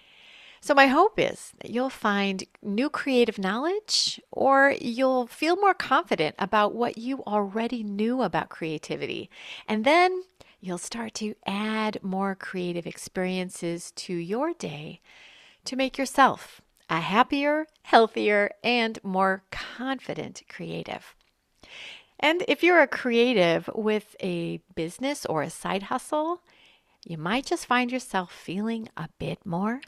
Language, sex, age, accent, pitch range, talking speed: English, female, 40-59, American, 185-270 Hz, 130 wpm